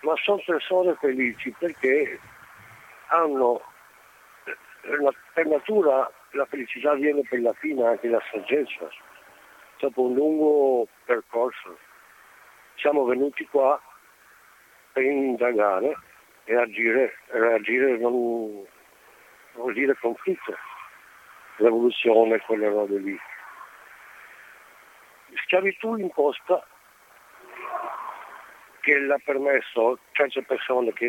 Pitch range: 115-150 Hz